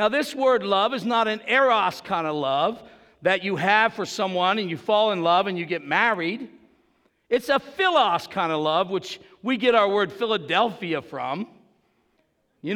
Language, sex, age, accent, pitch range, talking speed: English, male, 50-69, American, 190-255 Hz, 185 wpm